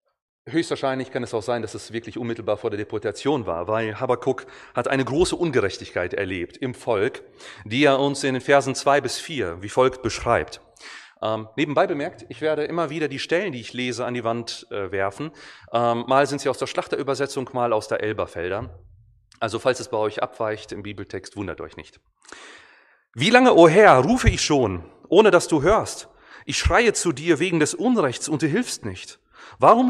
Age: 30-49